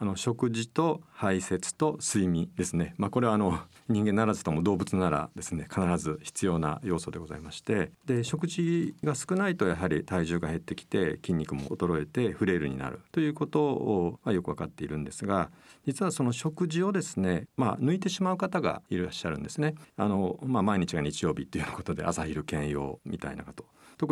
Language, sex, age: Japanese, male, 50-69